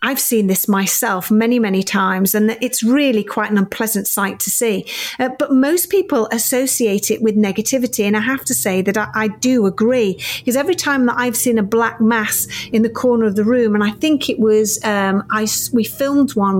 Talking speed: 215 wpm